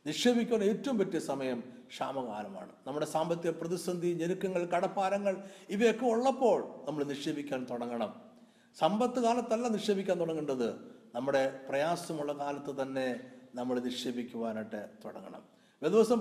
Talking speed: 95 wpm